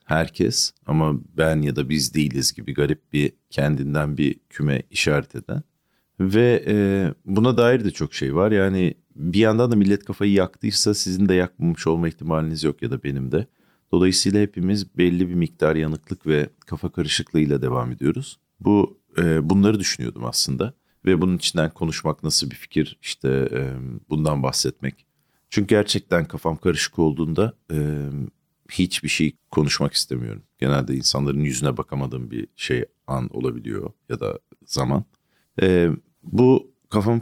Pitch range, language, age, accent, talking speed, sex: 75-100 Hz, Turkish, 40-59, native, 145 wpm, male